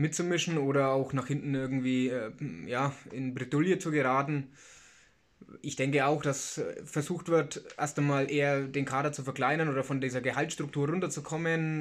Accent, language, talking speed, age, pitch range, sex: German, German, 150 wpm, 20-39, 130-145 Hz, male